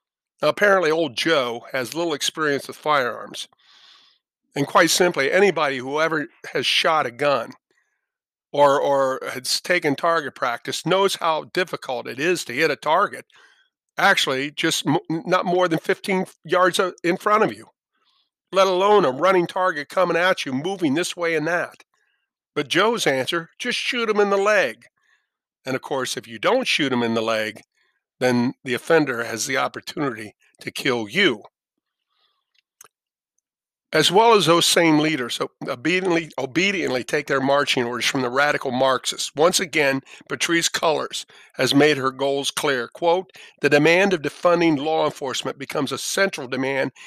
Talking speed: 160 wpm